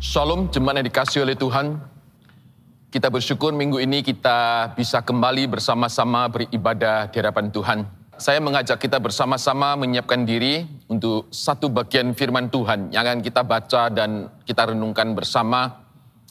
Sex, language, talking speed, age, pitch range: male, Indonesian, 125 wpm, 30-49, 110-130 Hz